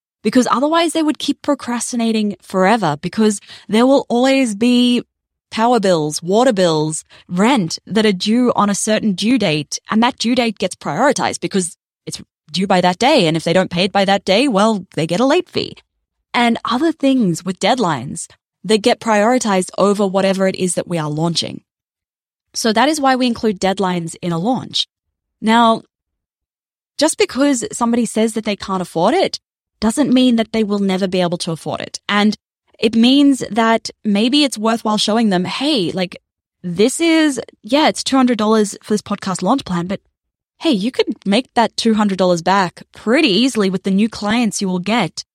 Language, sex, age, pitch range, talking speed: English, female, 20-39, 185-240 Hz, 180 wpm